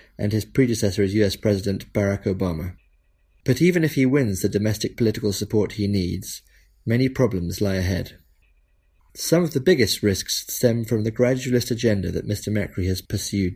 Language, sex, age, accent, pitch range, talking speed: English, male, 30-49, British, 95-125 Hz, 170 wpm